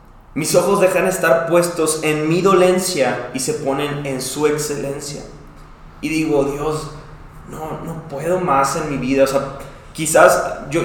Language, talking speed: Spanish, 155 wpm